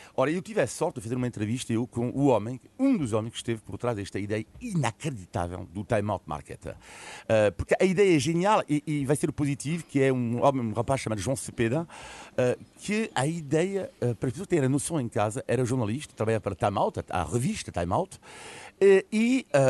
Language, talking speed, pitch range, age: Portuguese, 230 wpm, 105-160 Hz, 50-69